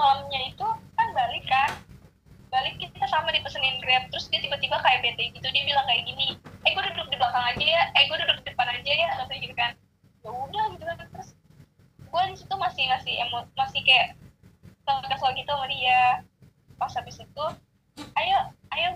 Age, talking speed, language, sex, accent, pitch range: 10-29, 175 wpm, Indonesian, female, native, 280-390 Hz